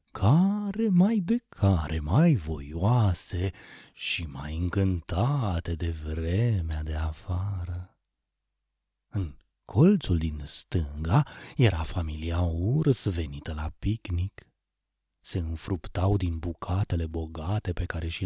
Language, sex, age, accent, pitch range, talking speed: Romanian, male, 30-49, native, 80-105 Hz, 100 wpm